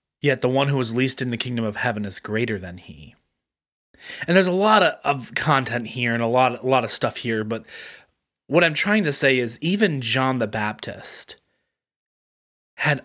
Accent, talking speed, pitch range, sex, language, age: American, 200 wpm, 110-145 Hz, male, English, 20-39